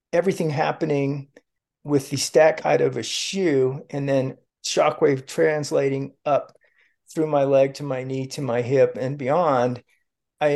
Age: 40-59